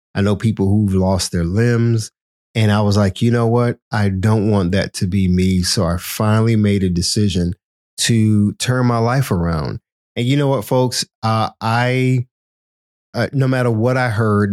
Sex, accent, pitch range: male, American, 95-120 Hz